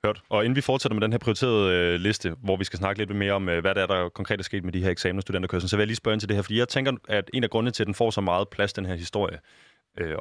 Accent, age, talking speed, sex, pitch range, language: native, 20-39, 335 wpm, male, 95-115 Hz, Danish